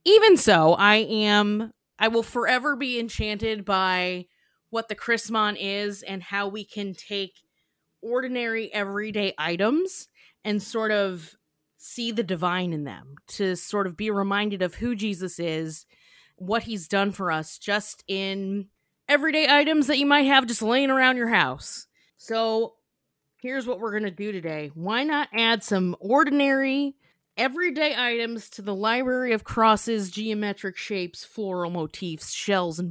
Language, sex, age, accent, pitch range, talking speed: English, female, 20-39, American, 185-235 Hz, 150 wpm